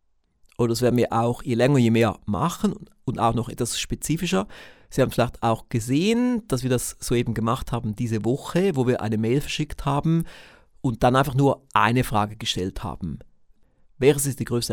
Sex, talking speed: male, 190 wpm